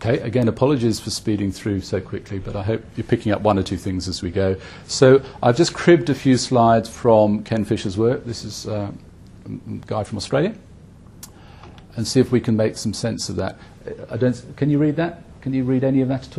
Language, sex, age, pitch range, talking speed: English, male, 40-59, 100-125 Hz, 220 wpm